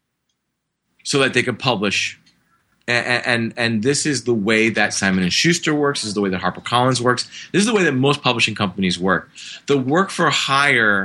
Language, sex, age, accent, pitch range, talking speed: English, male, 30-49, American, 105-135 Hz, 200 wpm